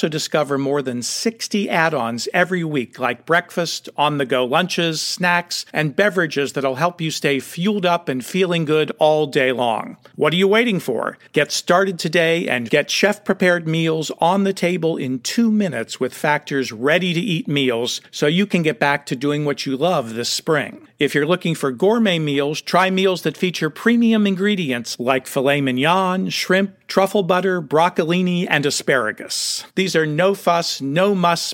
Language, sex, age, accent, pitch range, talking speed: English, male, 50-69, American, 140-185 Hz, 160 wpm